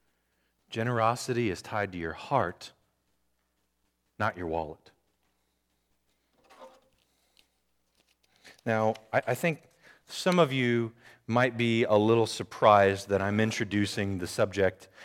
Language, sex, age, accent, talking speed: English, male, 40-59, American, 100 wpm